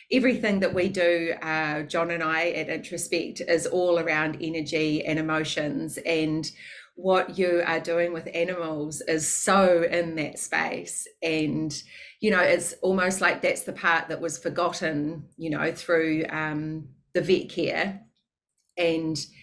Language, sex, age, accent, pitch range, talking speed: English, female, 30-49, Australian, 165-195 Hz, 150 wpm